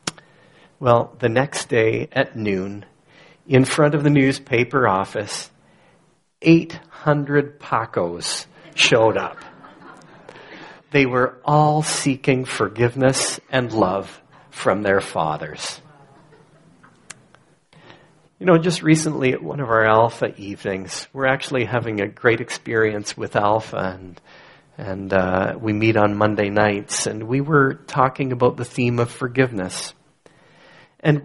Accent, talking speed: American, 120 wpm